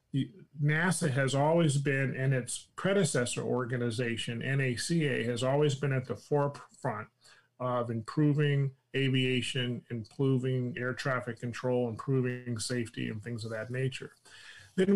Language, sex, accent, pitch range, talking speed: English, male, American, 120-145 Hz, 120 wpm